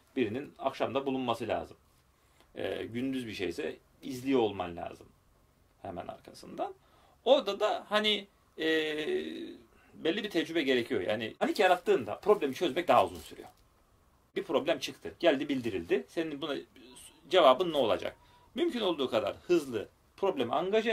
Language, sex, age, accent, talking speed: Turkish, male, 40-59, native, 130 wpm